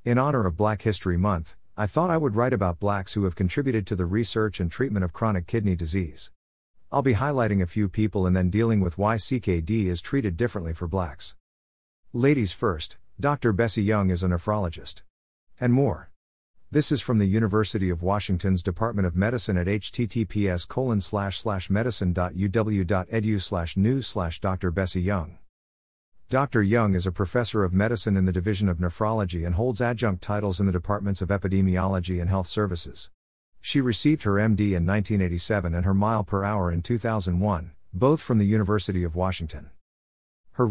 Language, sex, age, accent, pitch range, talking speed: English, male, 50-69, American, 90-110 Hz, 160 wpm